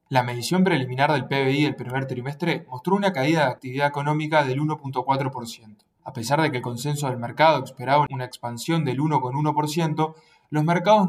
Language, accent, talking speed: English, Argentinian, 170 wpm